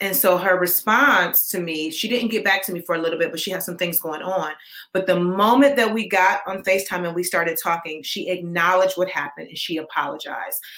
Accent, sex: American, female